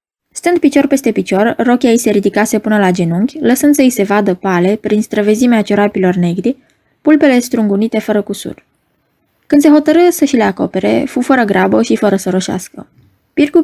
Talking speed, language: 165 wpm, Romanian